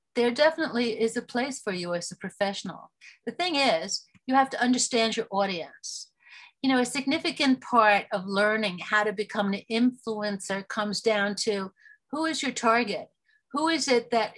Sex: female